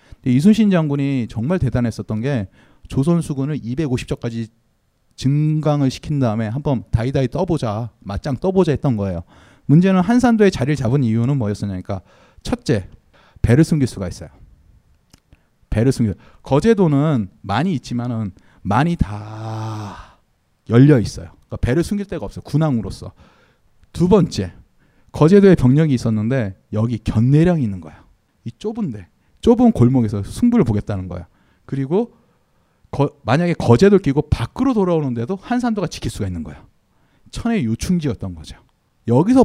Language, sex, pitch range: Korean, male, 105-165 Hz